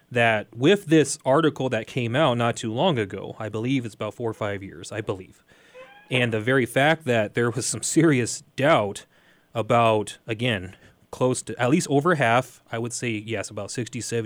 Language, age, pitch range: English, 30-49, 115-145 Hz